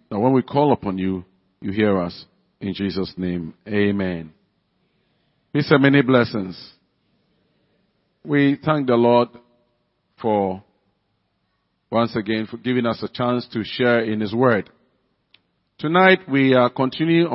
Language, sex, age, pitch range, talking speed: English, male, 50-69, 110-145 Hz, 130 wpm